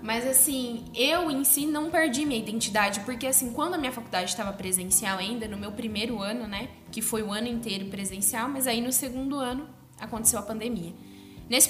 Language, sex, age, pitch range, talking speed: Portuguese, female, 10-29, 210-275 Hz, 195 wpm